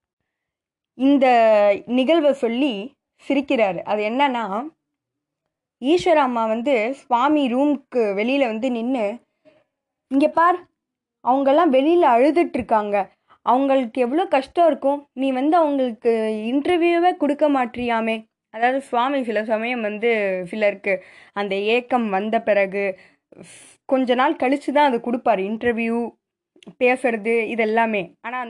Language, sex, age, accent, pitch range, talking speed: Tamil, female, 20-39, native, 215-275 Hz, 100 wpm